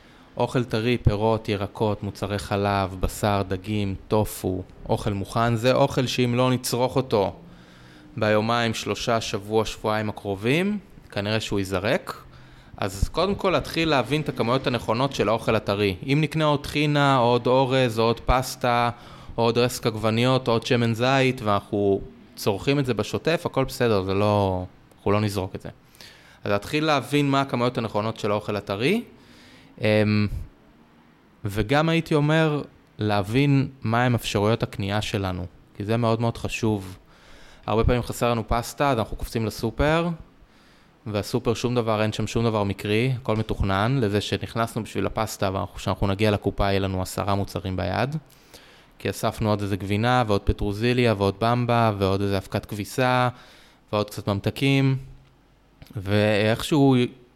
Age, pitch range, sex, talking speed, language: 20-39, 100-125 Hz, male, 140 wpm, Hebrew